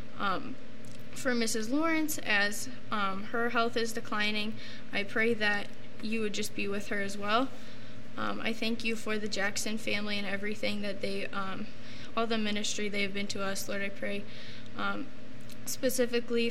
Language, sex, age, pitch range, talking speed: English, female, 10-29, 200-220 Hz, 170 wpm